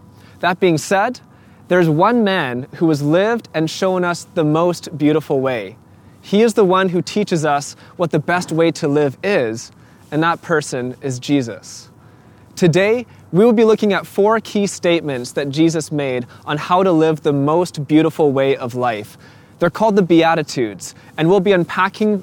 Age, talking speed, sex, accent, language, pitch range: 20-39, 175 wpm, male, American, English, 140-185 Hz